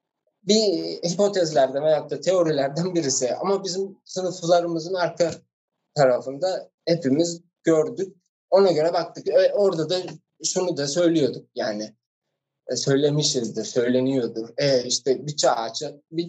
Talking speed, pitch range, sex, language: 105 wpm, 130-170 Hz, male, Turkish